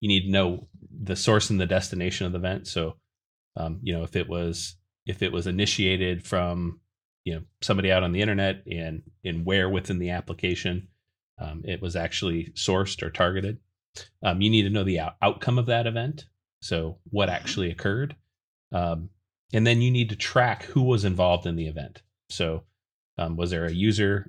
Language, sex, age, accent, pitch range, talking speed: English, male, 30-49, American, 85-100 Hz, 190 wpm